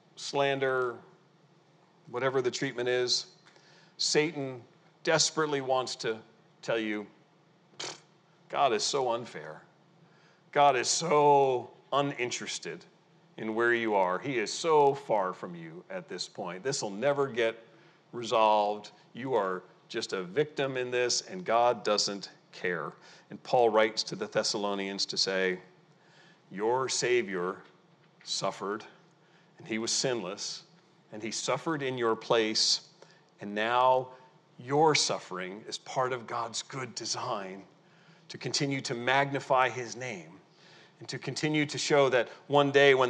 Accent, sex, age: American, male, 40-59